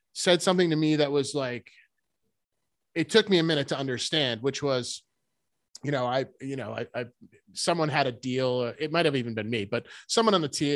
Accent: American